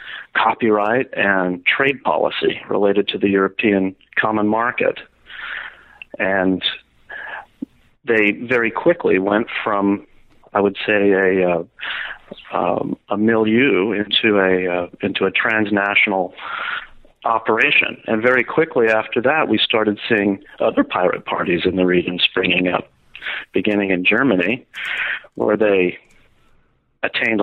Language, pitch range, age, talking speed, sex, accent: English, 95-115 Hz, 40-59, 115 wpm, male, American